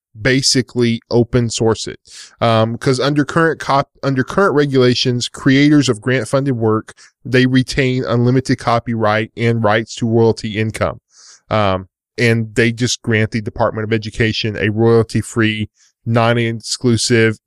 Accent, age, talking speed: American, 10-29, 130 wpm